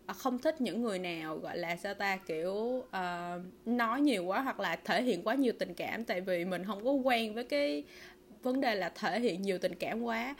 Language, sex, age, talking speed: Vietnamese, female, 20-39, 225 wpm